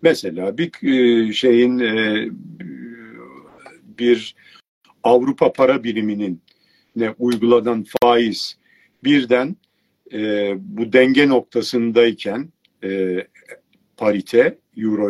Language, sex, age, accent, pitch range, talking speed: Turkish, male, 50-69, native, 105-160 Hz, 60 wpm